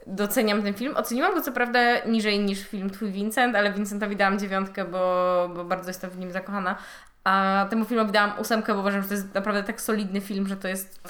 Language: Polish